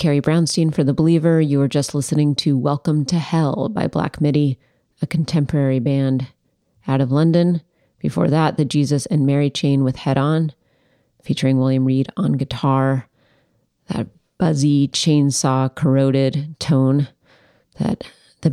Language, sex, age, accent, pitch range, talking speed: English, female, 30-49, American, 135-155 Hz, 145 wpm